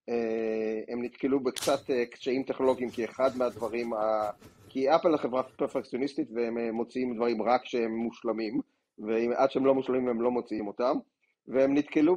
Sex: male